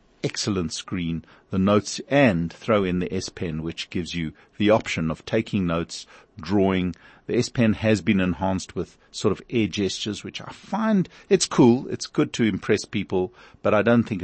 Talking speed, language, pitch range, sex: 185 wpm, English, 85-115 Hz, male